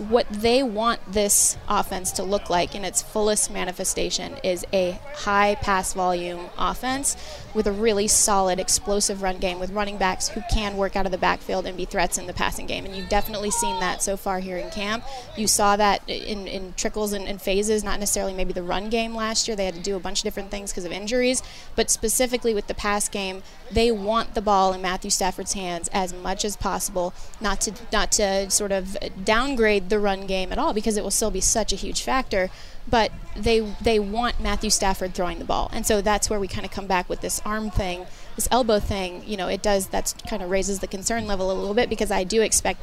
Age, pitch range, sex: 20-39, 190-220 Hz, female